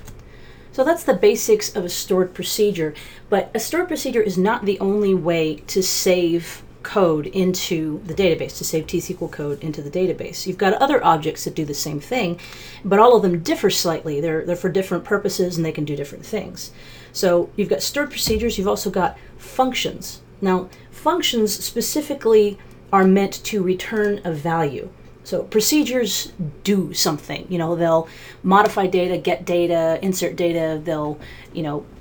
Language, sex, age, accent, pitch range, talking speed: English, female, 30-49, American, 165-205 Hz, 170 wpm